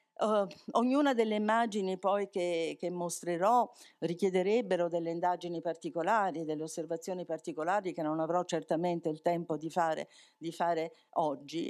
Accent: native